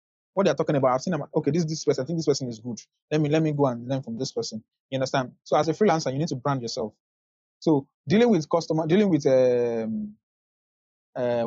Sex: male